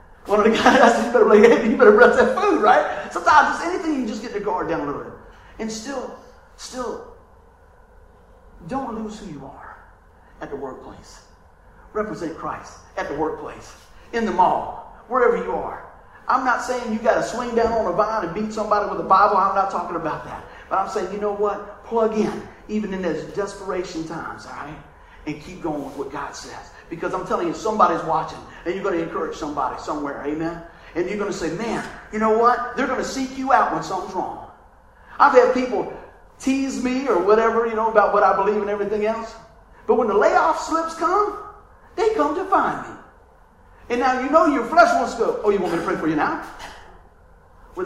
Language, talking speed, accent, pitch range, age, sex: English, 210 wpm, American, 175-260 Hz, 40-59, male